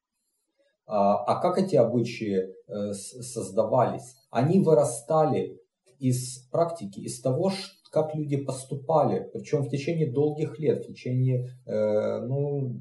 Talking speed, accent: 105 wpm, native